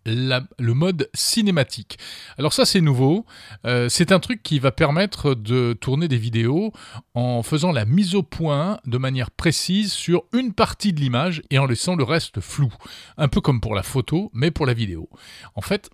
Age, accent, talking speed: 40-59, French, 190 wpm